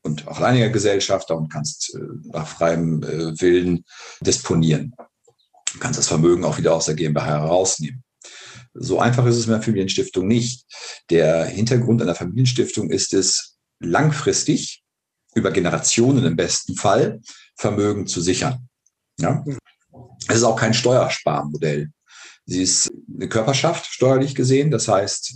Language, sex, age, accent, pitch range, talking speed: German, male, 50-69, German, 90-125 Hz, 140 wpm